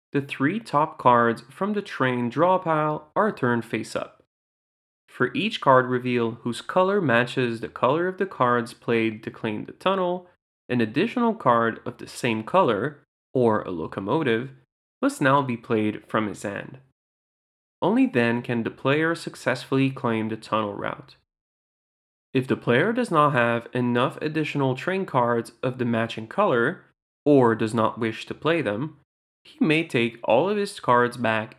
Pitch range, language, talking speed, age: 115-155 Hz, English, 160 wpm, 20-39